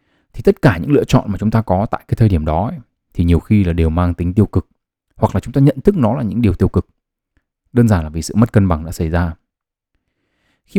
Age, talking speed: 20-39, 275 wpm